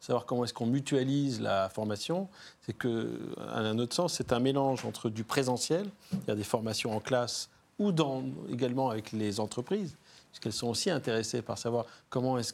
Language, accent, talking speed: French, French, 185 wpm